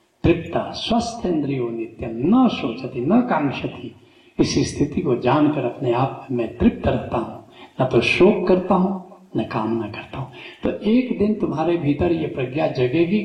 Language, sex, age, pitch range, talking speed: English, male, 60-79, 125-185 Hz, 155 wpm